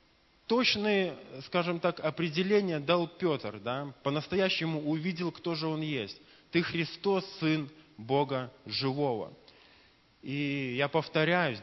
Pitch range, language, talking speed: 145-180 Hz, Russian, 110 wpm